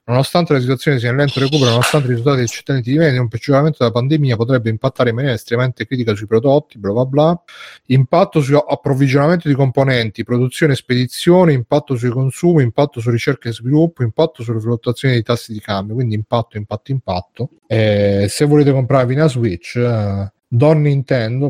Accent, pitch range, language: native, 115-140 Hz, Italian